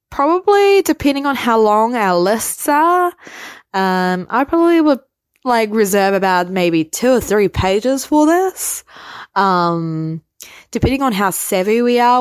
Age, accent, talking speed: 20-39, Australian, 145 wpm